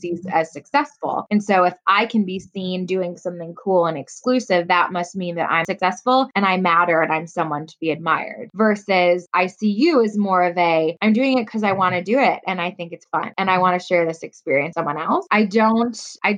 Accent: American